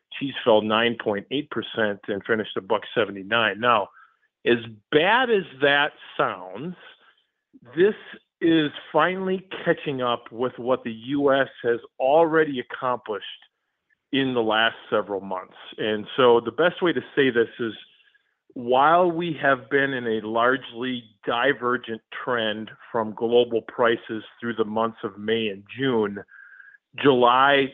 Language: English